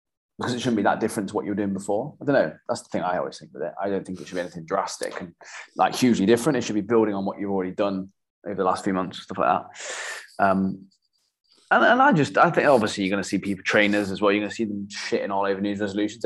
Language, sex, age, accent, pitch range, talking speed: English, male, 20-39, British, 100-130 Hz, 290 wpm